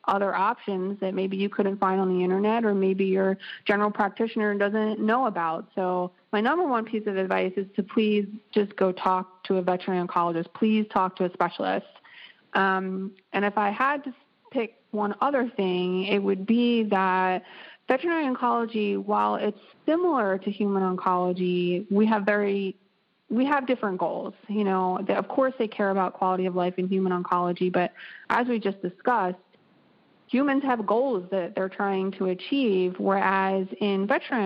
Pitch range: 185-220 Hz